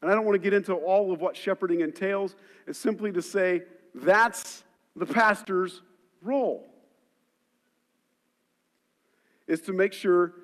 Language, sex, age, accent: English, male, 50-69, American